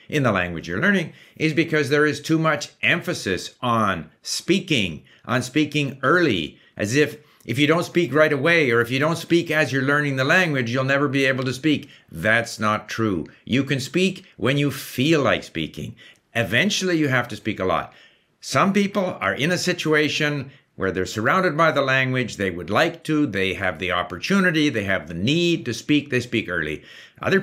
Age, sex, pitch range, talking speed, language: 60-79, male, 110-155 Hz, 195 wpm, English